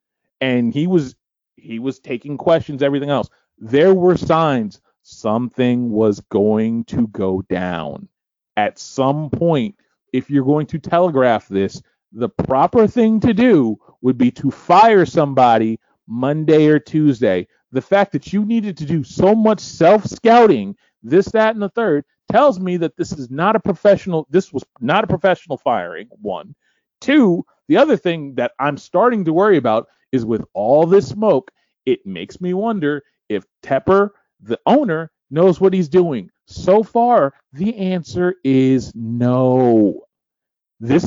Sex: male